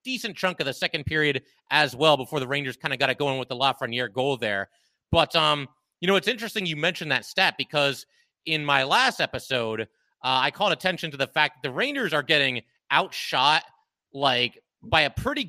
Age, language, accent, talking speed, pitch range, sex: 30-49, English, American, 205 wpm, 135-185 Hz, male